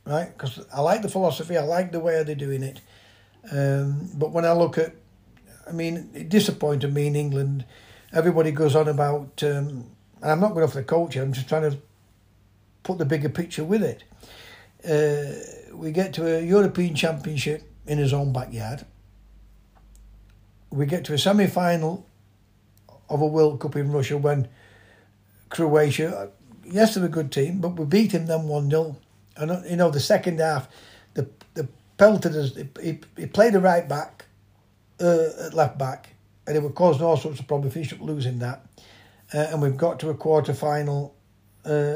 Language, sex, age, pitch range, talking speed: English, male, 60-79, 110-160 Hz, 175 wpm